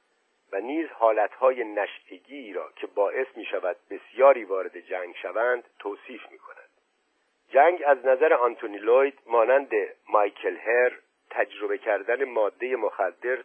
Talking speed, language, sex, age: 125 wpm, Persian, male, 50-69